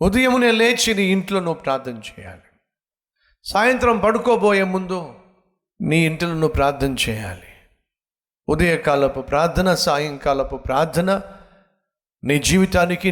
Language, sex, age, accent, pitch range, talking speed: Telugu, male, 50-69, native, 110-175 Hz, 95 wpm